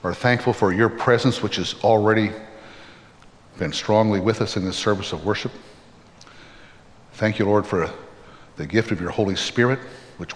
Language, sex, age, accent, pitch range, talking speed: English, male, 60-79, American, 100-125 Hz, 160 wpm